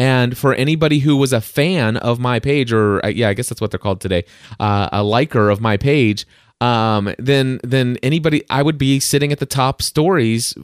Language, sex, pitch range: English, male, 105-135 Hz